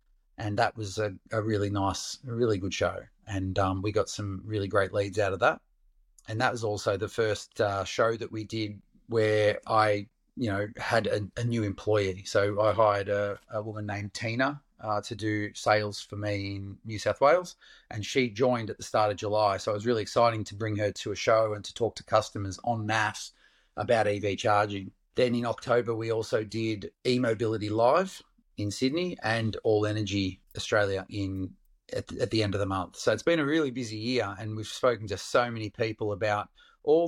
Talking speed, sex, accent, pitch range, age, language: 205 wpm, male, Australian, 100-115 Hz, 30-49, English